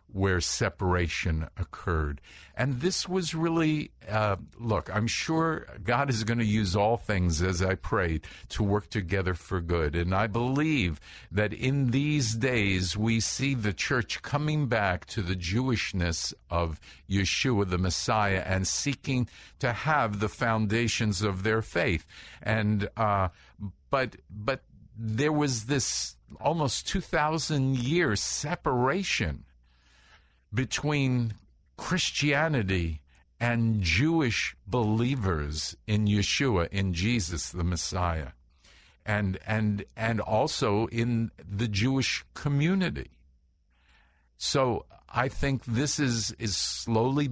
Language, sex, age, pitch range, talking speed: English, male, 50-69, 90-130 Hz, 115 wpm